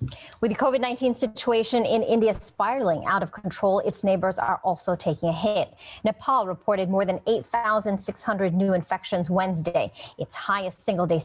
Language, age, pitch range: English, 30-49, 175-220 Hz